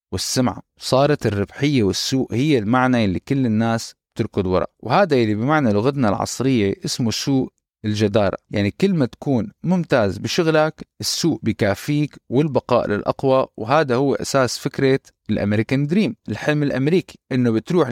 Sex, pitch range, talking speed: male, 110-145 Hz, 130 wpm